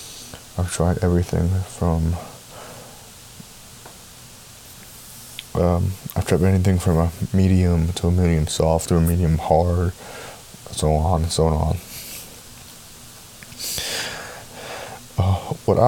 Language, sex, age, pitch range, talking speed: English, male, 20-39, 85-105 Hz, 100 wpm